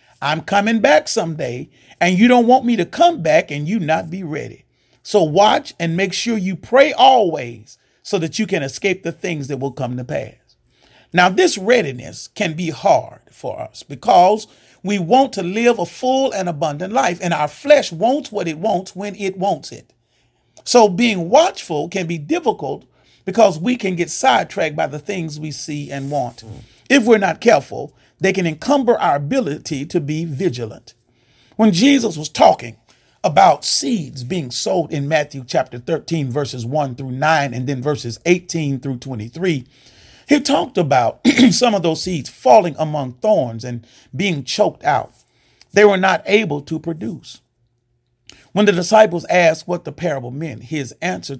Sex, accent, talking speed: male, American, 175 wpm